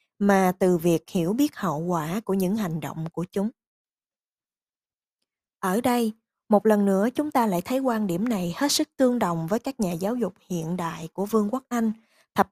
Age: 20-39